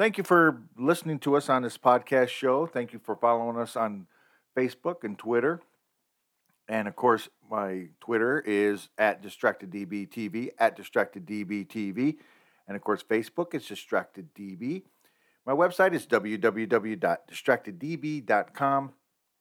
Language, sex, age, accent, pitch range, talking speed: English, male, 50-69, American, 110-140 Hz, 130 wpm